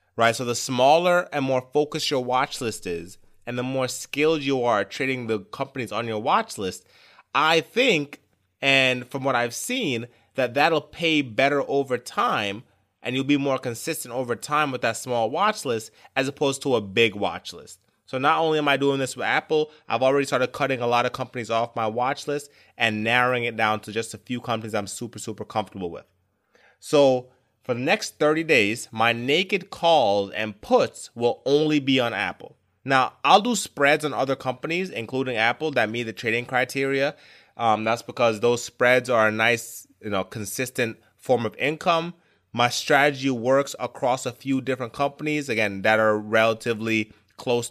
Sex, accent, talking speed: male, American, 185 wpm